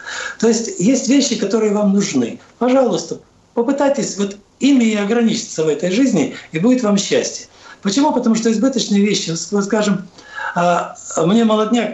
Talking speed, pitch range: 140 wpm, 175-240 Hz